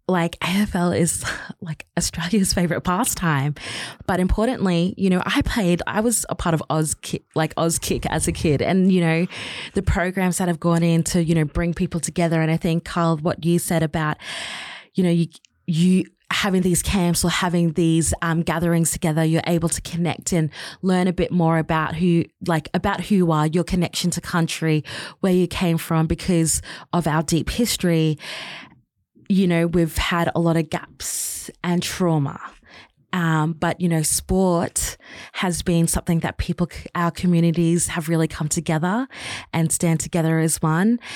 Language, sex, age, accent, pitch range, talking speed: English, female, 20-39, Australian, 165-180 Hz, 175 wpm